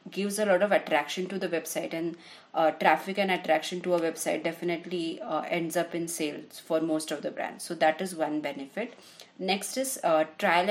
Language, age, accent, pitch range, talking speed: English, 30-49, Indian, 160-190 Hz, 200 wpm